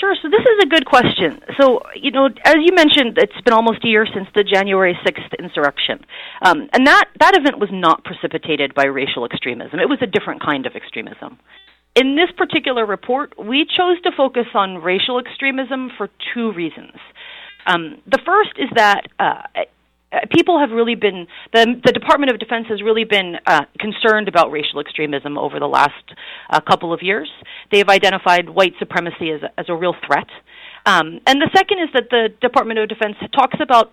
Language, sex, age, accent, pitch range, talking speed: English, female, 40-59, American, 185-270 Hz, 190 wpm